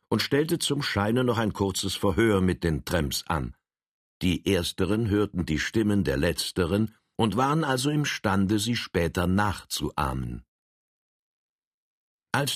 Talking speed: 130 wpm